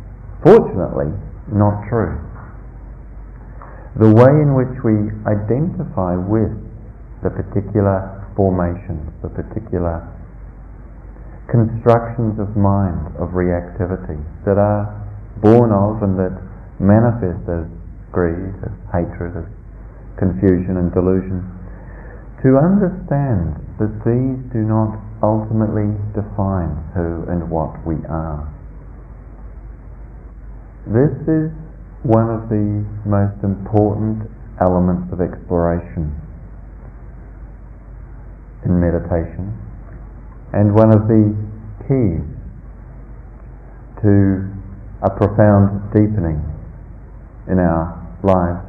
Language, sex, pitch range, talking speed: English, male, 90-110 Hz, 90 wpm